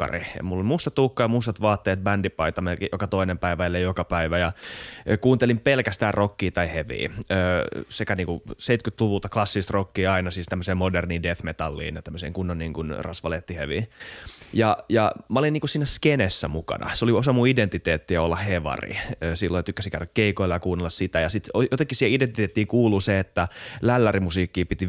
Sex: male